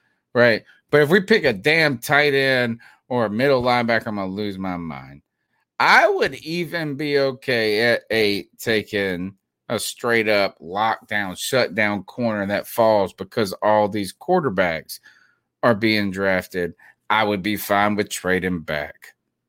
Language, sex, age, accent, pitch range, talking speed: English, male, 30-49, American, 95-125 Hz, 150 wpm